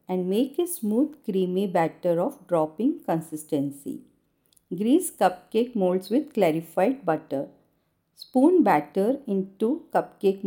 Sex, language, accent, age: female, Hindi, native, 50-69